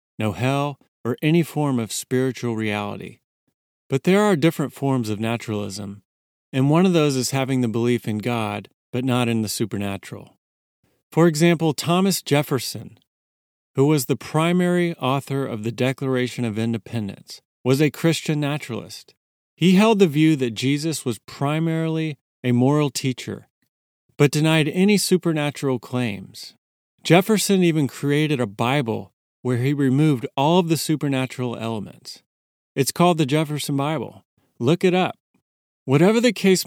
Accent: American